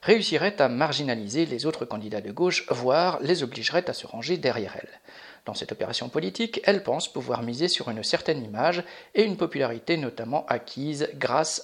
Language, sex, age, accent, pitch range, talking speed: French, male, 50-69, French, 130-175 Hz, 175 wpm